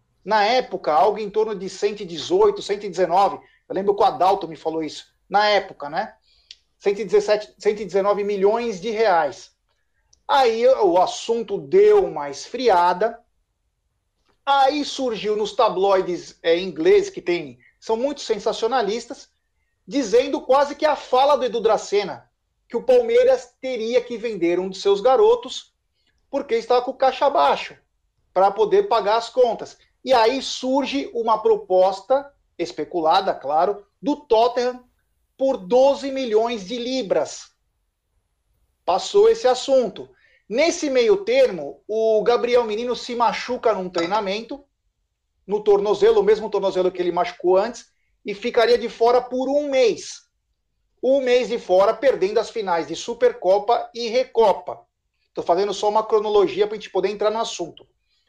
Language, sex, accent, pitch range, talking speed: Portuguese, male, Brazilian, 205-290 Hz, 140 wpm